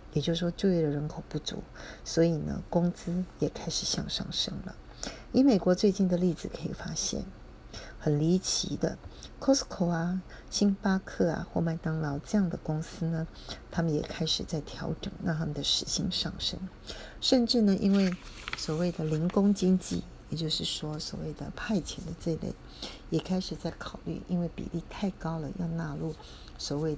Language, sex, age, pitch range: Chinese, female, 40-59, 155-190 Hz